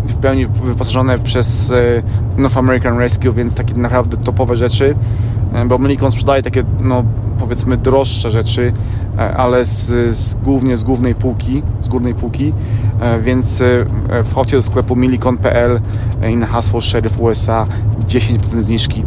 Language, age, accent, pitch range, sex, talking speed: Polish, 20-39, native, 110-120 Hz, male, 130 wpm